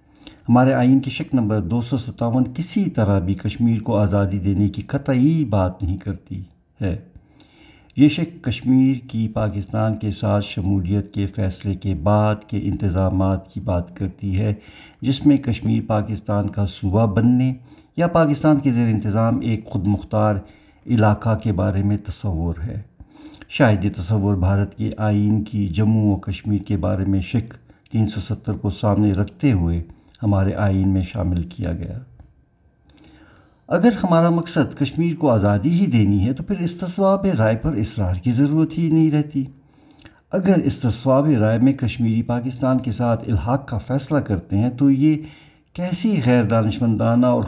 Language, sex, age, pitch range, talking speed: Urdu, male, 60-79, 100-135 Hz, 160 wpm